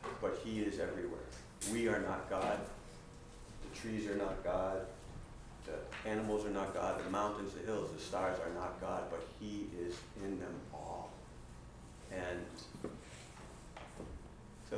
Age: 30-49